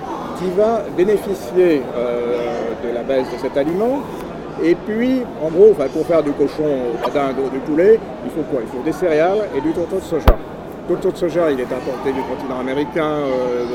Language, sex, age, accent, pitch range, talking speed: French, male, 50-69, French, 140-200 Hz, 195 wpm